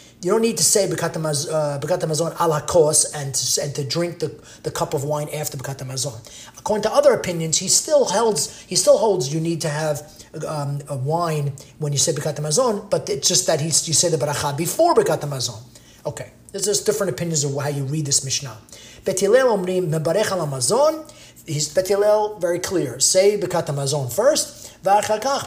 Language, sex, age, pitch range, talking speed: English, male, 30-49, 145-180 Hz, 170 wpm